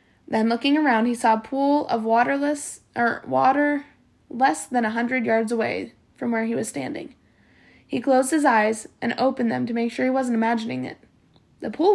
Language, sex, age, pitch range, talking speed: English, female, 20-39, 220-275 Hz, 190 wpm